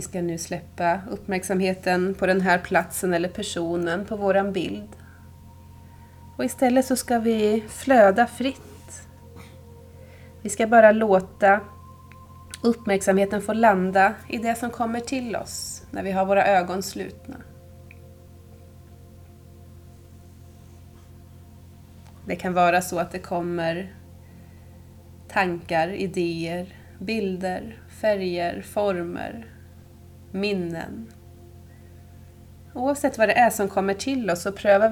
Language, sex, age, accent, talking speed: Swedish, female, 30-49, native, 110 wpm